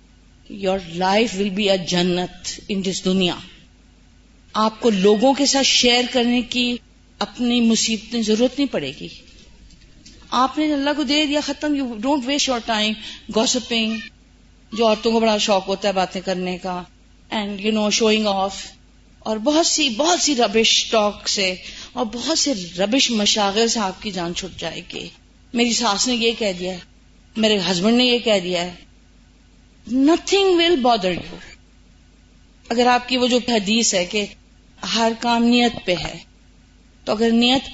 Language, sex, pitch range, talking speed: Urdu, female, 195-250 Hz, 160 wpm